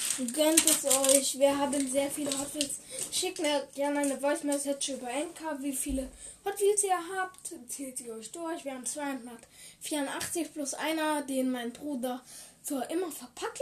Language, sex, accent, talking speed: German, female, German, 165 wpm